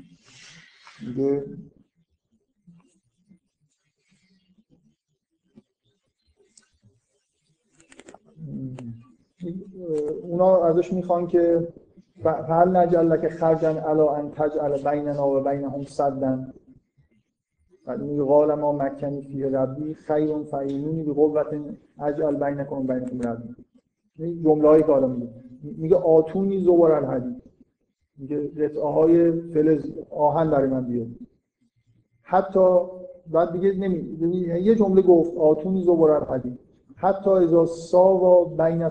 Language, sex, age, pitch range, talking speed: Persian, male, 50-69, 140-180 Hz, 95 wpm